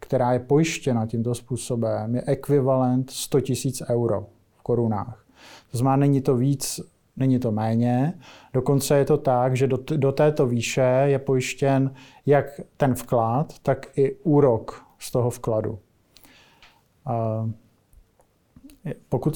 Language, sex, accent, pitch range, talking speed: Czech, male, native, 125-145 Hz, 125 wpm